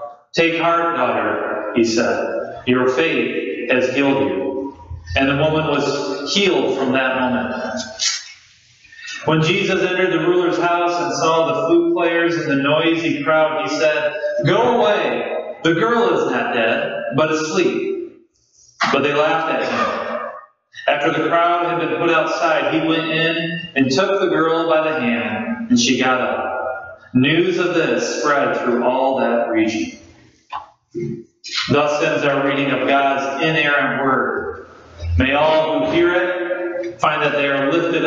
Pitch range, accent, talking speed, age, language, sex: 135-170 Hz, American, 150 wpm, 40-59, English, male